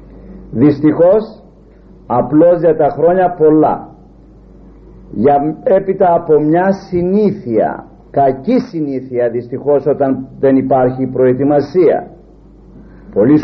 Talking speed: 85 wpm